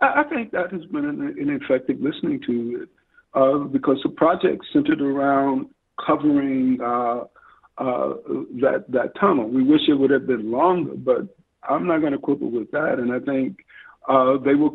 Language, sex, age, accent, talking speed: English, male, 50-69, American, 175 wpm